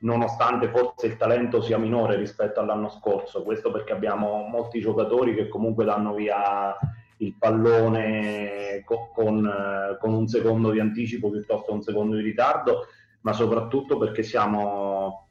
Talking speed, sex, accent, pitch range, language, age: 140 wpm, male, native, 105-120 Hz, Italian, 30-49